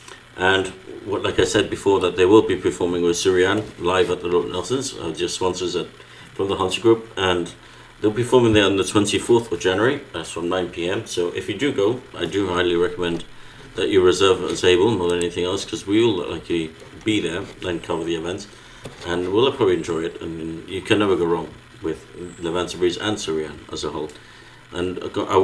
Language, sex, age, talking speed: English, male, 50-69, 210 wpm